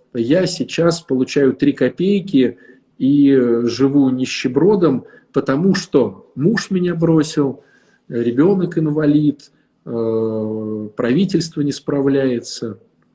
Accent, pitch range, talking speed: native, 120-165 Hz, 80 wpm